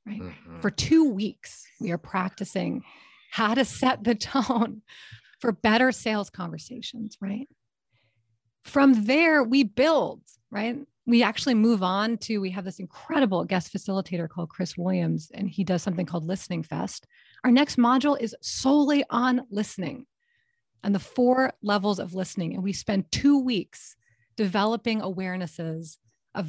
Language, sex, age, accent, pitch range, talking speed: English, female, 30-49, American, 175-240 Hz, 145 wpm